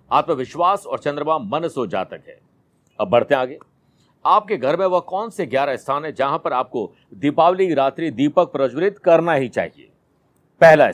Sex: male